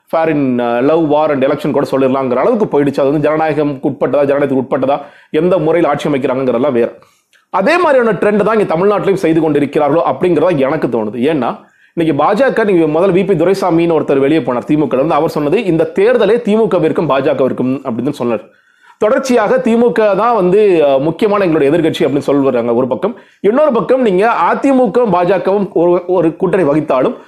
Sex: male